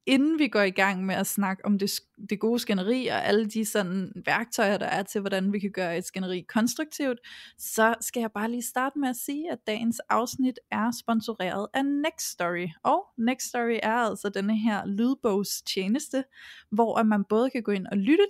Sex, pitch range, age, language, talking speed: female, 195-240 Hz, 20-39, Danish, 205 wpm